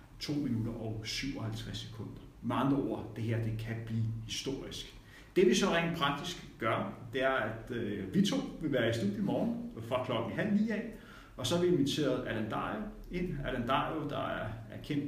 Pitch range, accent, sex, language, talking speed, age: 115-145 Hz, native, male, Danish, 195 wpm, 30-49